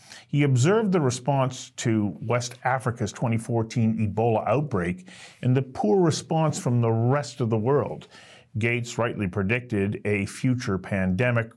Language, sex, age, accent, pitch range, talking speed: English, male, 50-69, American, 105-130 Hz, 135 wpm